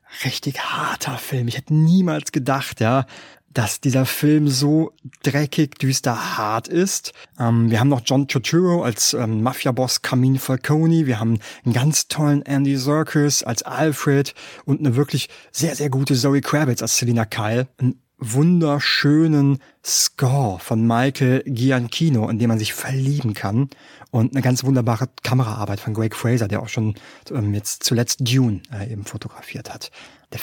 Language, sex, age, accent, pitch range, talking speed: German, male, 30-49, German, 120-145 Hz, 150 wpm